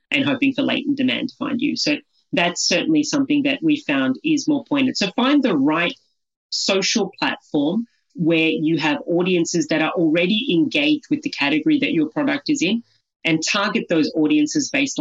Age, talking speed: 30-49, 180 wpm